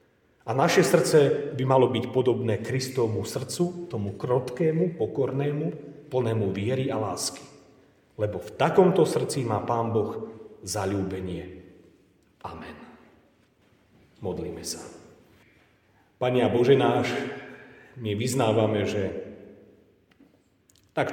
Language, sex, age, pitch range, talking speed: Slovak, male, 40-59, 95-125 Hz, 95 wpm